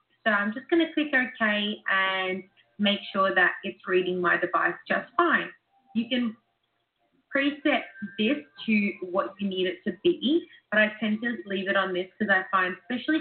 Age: 20-39